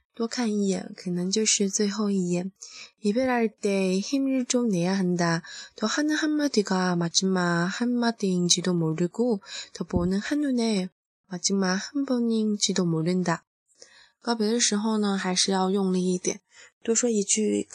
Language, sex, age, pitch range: Chinese, female, 20-39, 185-220 Hz